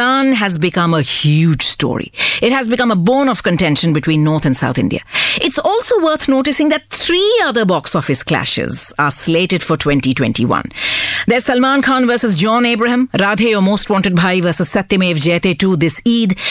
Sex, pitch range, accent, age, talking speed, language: female, 175-265 Hz, Indian, 50-69, 180 wpm, English